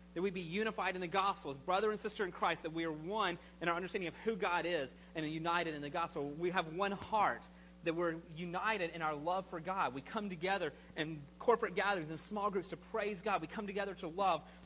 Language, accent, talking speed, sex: English, American, 240 wpm, male